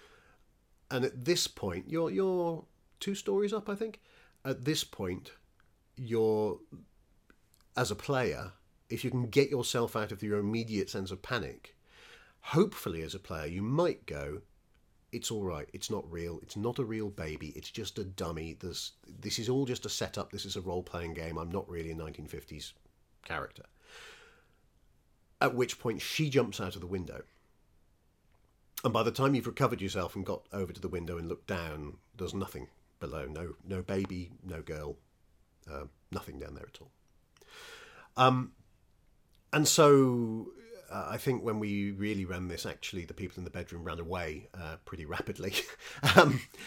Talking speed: 170 wpm